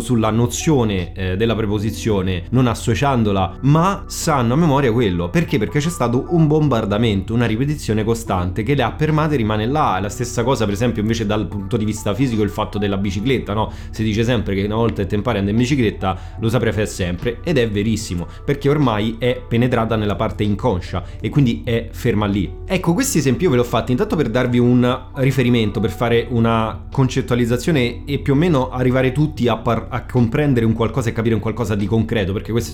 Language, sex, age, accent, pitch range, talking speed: Italian, male, 30-49, native, 105-125 Hz, 205 wpm